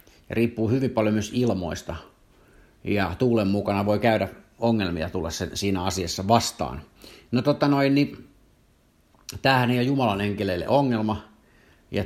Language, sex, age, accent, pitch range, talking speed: Finnish, male, 50-69, native, 100-125 Hz, 125 wpm